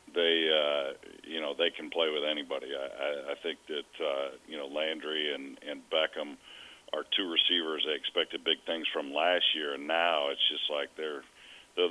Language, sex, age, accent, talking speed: English, male, 40-59, American, 190 wpm